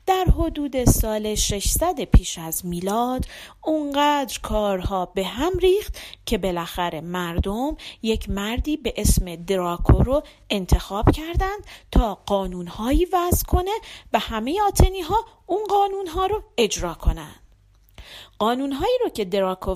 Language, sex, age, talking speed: Persian, female, 40-59, 120 wpm